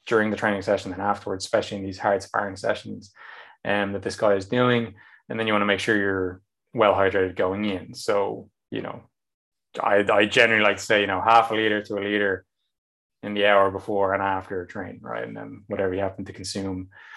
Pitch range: 100-115 Hz